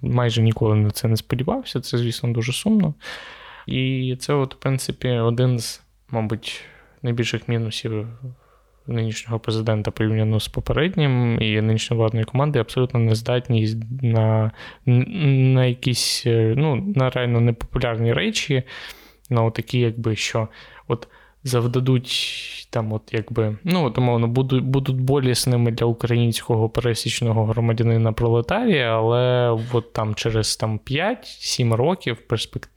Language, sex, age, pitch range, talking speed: Ukrainian, male, 20-39, 110-130 Hz, 125 wpm